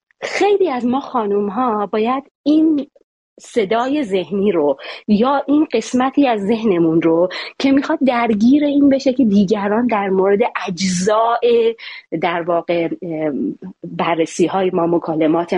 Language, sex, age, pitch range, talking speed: Persian, female, 30-49, 190-255 Hz, 125 wpm